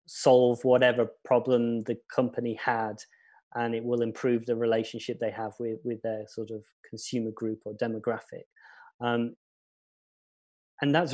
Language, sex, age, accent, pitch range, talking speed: English, male, 30-49, British, 115-135 Hz, 140 wpm